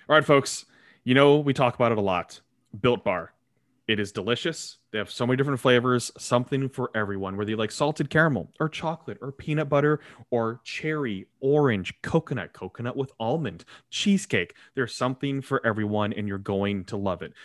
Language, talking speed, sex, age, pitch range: English, 180 wpm, male, 20-39, 105-135 Hz